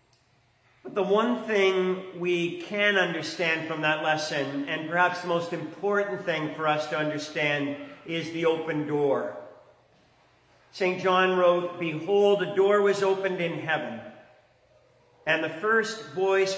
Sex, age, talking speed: male, 50-69, 140 wpm